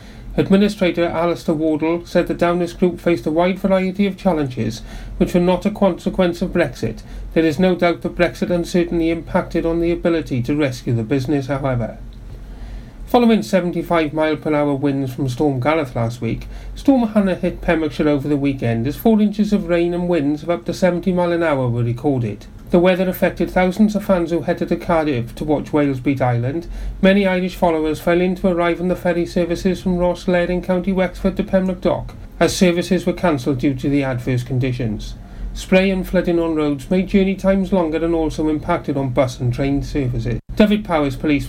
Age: 40-59